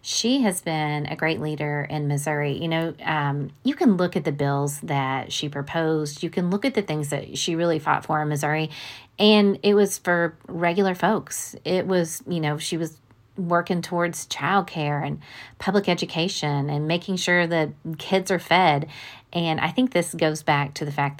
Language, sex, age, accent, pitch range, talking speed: English, female, 30-49, American, 140-170 Hz, 190 wpm